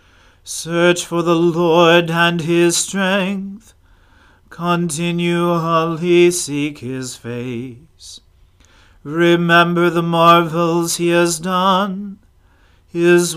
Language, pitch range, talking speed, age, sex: English, 130-175 Hz, 85 wpm, 40-59, male